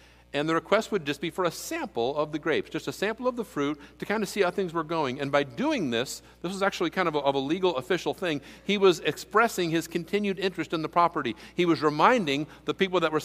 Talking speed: 255 wpm